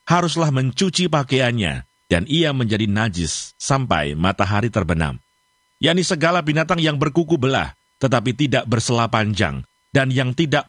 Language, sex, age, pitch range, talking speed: Indonesian, male, 50-69, 110-165 Hz, 125 wpm